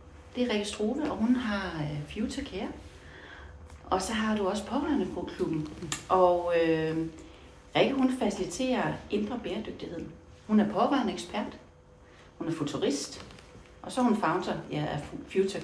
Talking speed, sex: 145 wpm, female